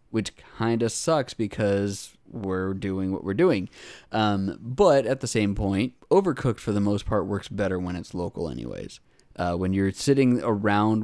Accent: American